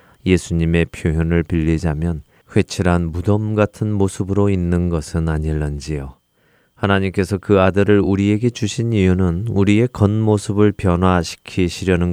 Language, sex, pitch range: Korean, male, 80-100 Hz